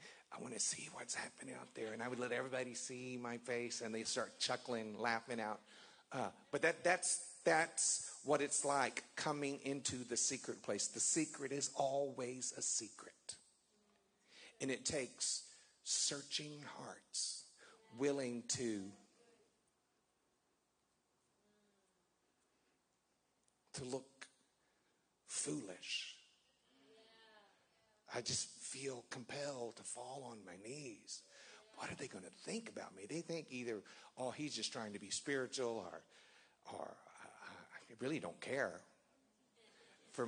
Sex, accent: male, American